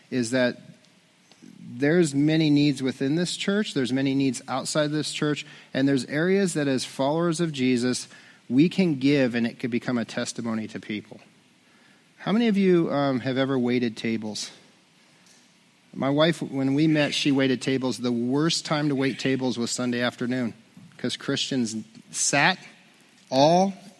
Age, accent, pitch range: 40-59, American, 120-155 Hz